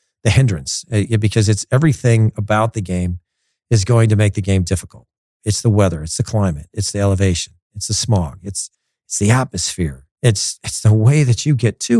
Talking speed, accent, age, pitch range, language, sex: 195 wpm, American, 40-59, 100-130 Hz, English, male